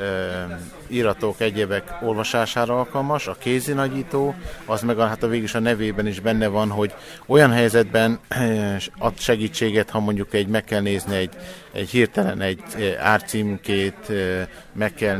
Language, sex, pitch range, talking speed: Hungarian, male, 100-125 Hz, 120 wpm